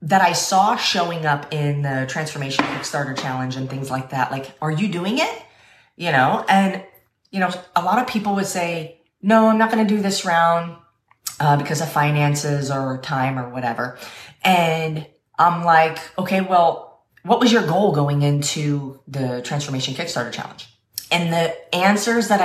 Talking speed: 175 wpm